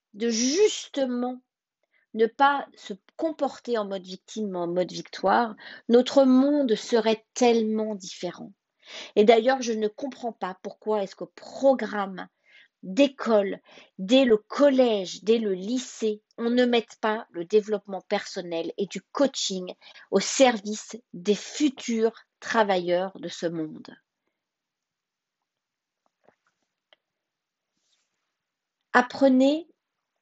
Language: French